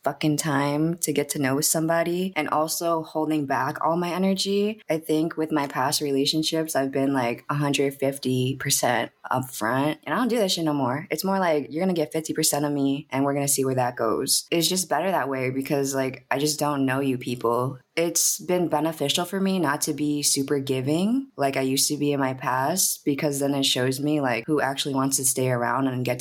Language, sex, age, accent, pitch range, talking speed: English, female, 20-39, American, 130-155 Hz, 220 wpm